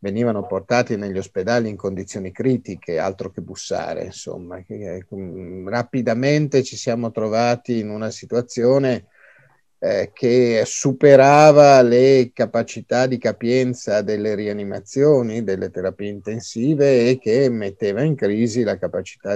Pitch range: 105-135 Hz